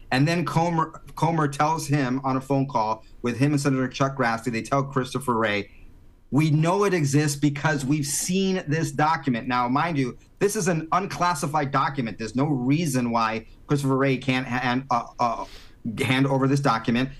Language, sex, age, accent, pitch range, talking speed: English, male, 40-59, American, 120-145 Hz, 180 wpm